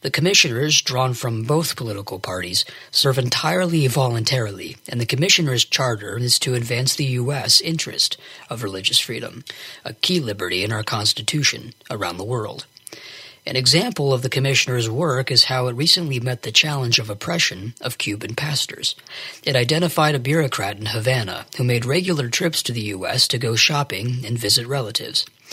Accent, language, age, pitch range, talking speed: American, English, 40-59, 115-145 Hz, 160 wpm